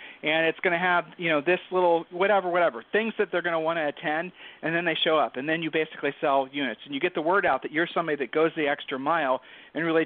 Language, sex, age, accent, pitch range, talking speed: English, male, 40-59, American, 155-200 Hz, 275 wpm